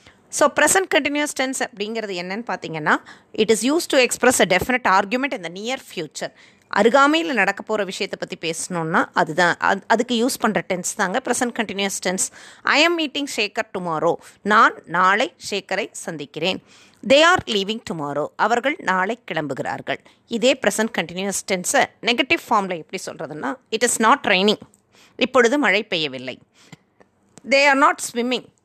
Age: 20-39